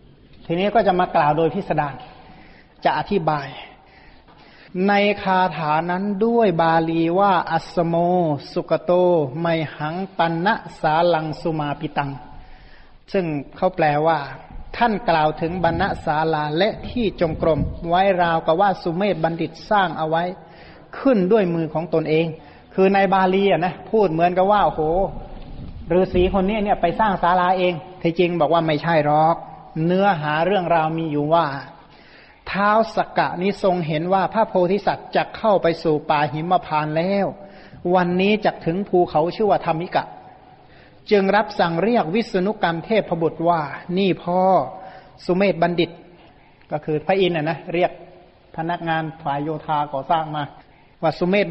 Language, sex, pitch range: Thai, male, 160-190 Hz